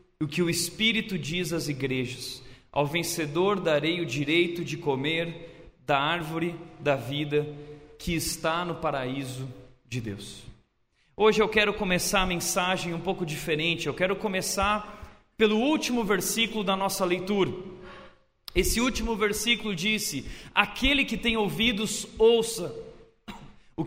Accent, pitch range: Brazilian, 165-235 Hz